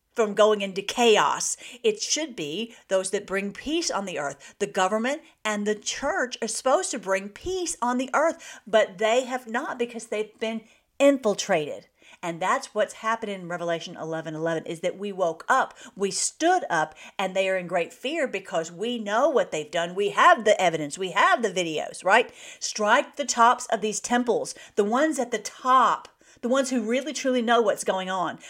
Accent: American